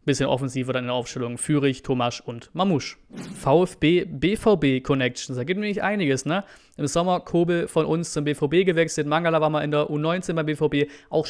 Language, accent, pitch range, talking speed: German, German, 140-170 Hz, 185 wpm